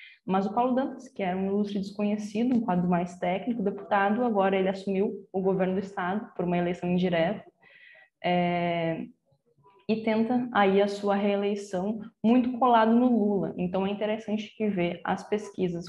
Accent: Brazilian